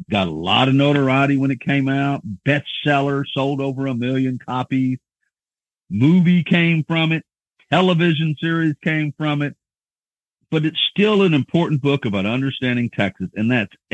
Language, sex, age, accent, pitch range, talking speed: English, male, 50-69, American, 100-135 Hz, 150 wpm